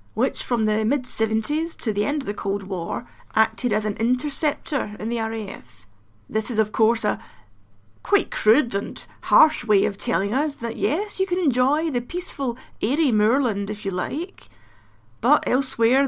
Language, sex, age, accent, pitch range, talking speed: English, female, 30-49, British, 205-260 Hz, 170 wpm